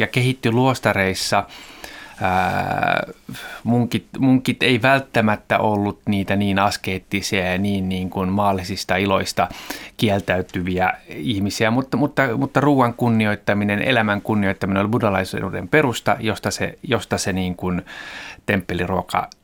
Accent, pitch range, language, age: native, 95-115 Hz, Finnish, 30-49